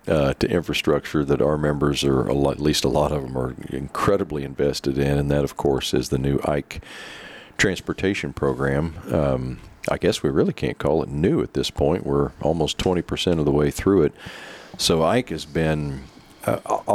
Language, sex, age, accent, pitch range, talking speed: English, male, 40-59, American, 65-80 Hz, 190 wpm